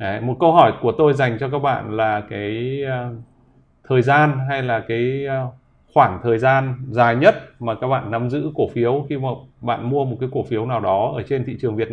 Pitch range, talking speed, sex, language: 110-135 Hz, 220 wpm, male, Vietnamese